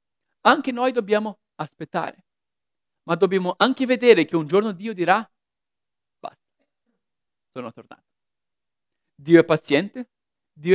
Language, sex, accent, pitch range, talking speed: Italian, male, native, 180-255 Hz, 110 wpm